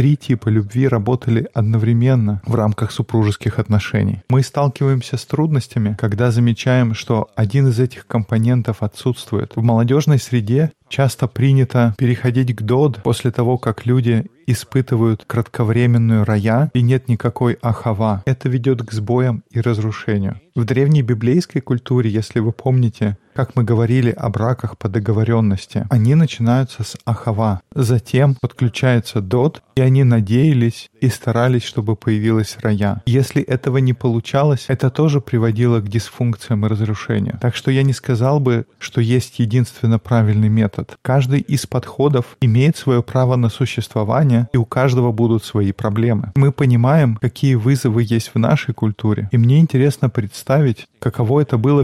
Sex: male